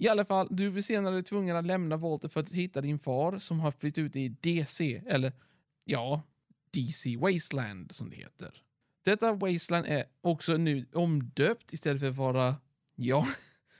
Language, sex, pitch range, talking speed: Swedish, male, 135-180 Hz, 175 wpm